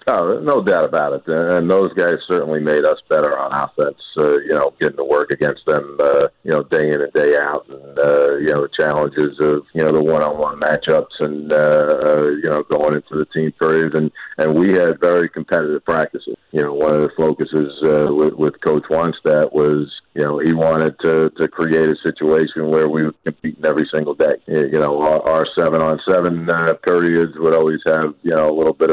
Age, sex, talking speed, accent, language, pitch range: 50-69, male, 205 wpm, American, English, 75-80 Hz